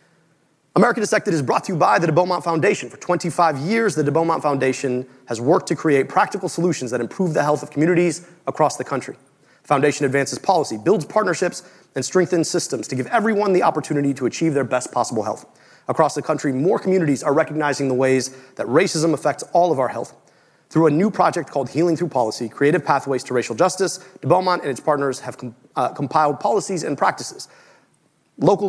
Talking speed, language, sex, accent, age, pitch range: 200 wpm, English, male, American, 30-49, 135-180 Hz